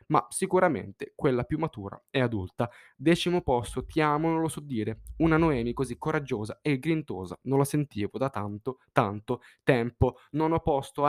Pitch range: 120-155 Hz